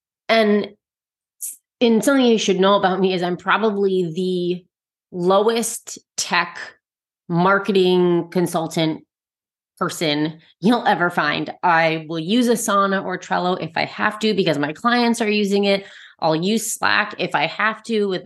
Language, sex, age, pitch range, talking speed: English, female, 30-49, 170-210 Hz, 145 wpm